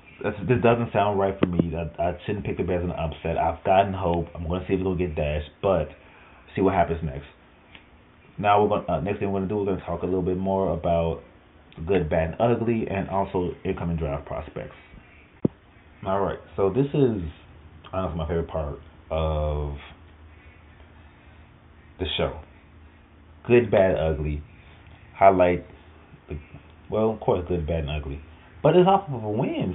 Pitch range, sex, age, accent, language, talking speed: 80-105 Hz, male, 30-49, American, English, 175 wpm